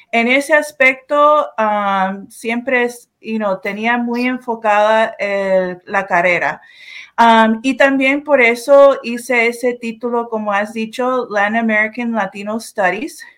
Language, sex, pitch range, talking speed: English, female, 205-245 Hz, 125 wpm